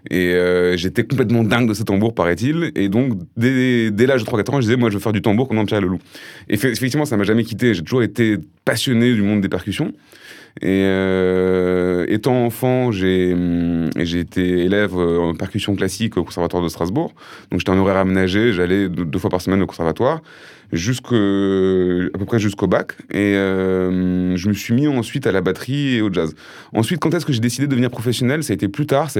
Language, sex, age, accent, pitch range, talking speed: French, male, 20-39, French, 90-115 Hz, 220 wpm